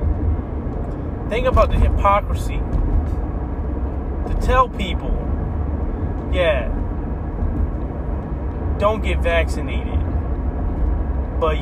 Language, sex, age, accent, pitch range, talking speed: English, male, 30-49, American, 75-80 Hz, 60 wpm